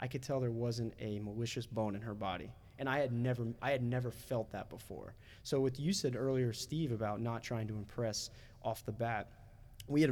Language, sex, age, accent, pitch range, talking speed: English, male, 20-39, American, 110-130 Hz, 220 wpm